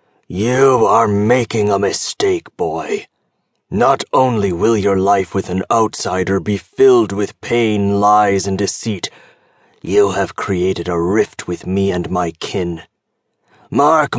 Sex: male